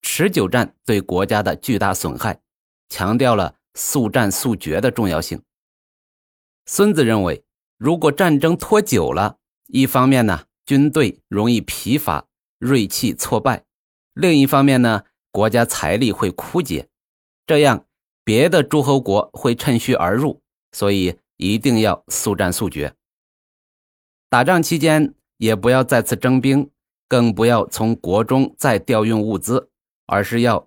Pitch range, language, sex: 105-140 Hz, Chinese, male